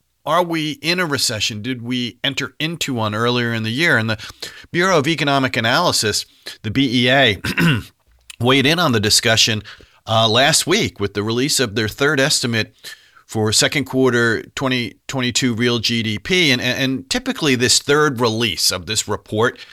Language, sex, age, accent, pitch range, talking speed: English, male, 40-59, American, 110-130 Hz, 160 wpm